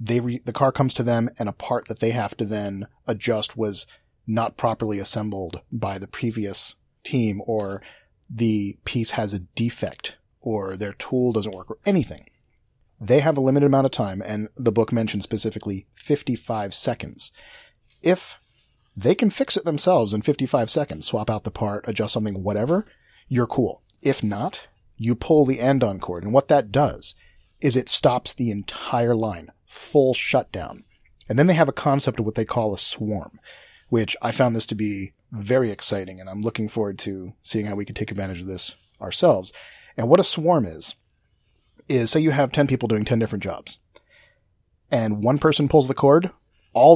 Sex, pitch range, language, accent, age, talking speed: male, 105-130 Hz, English, American, 40-59, 185 wpm